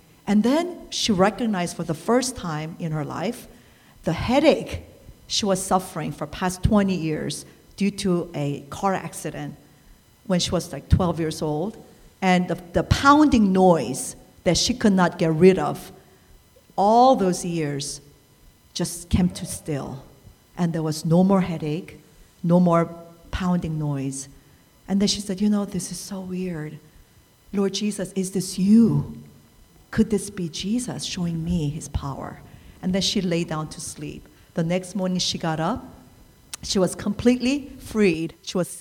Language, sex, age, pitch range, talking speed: English, female, 50-69, 160-200 Hz, 160 wpm